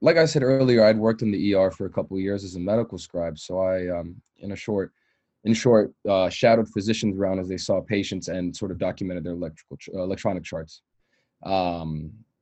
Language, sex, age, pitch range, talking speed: English, male, 20-39, 95-115 Hz, 215 wpm